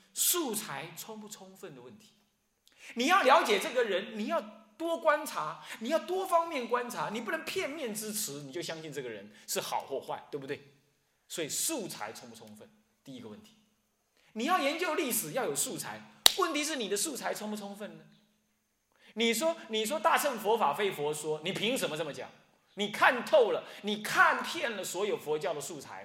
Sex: male